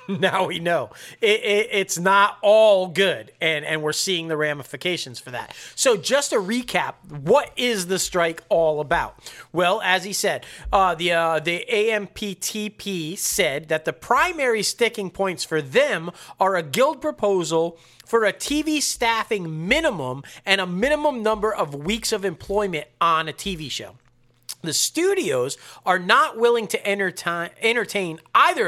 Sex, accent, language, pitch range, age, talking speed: male, American, English, 160-220 Hz, 40-59, 155 wpm